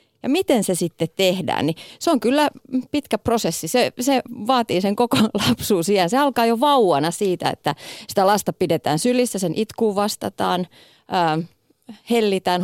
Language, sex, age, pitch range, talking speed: Finnish, female, 30-49, 165-245 Hz, 155 wpm